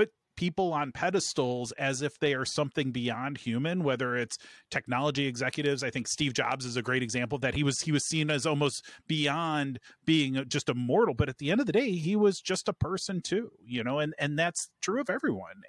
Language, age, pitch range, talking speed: English, 30-49, 130-160 Hz, 220 wpm